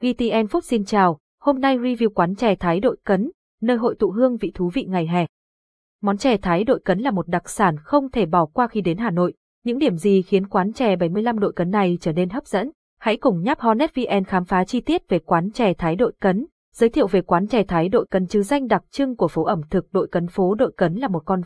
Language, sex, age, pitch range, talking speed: Vietnamese, female, 20-39, 180-235 Hz, 255 wpm